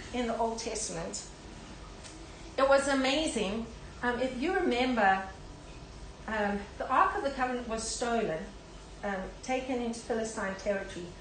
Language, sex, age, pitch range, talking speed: English, female, 40-59, 220-275 Hz, 130 wpm